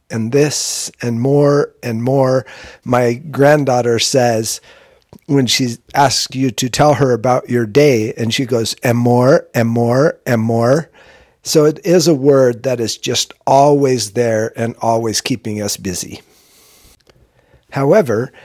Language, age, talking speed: English, 50-69, 145 wpm